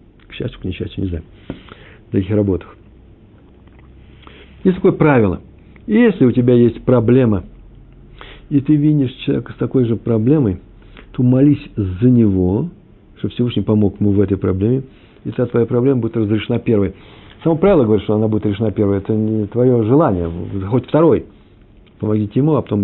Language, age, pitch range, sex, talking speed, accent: Russian, 60-79, 100-125 Hz, male, 160 wpm, native